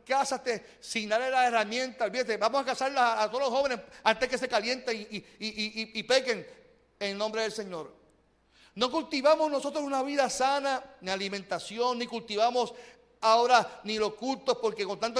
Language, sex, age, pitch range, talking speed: Spanish, male, 40-59, 205-260 Hz, 180 wpm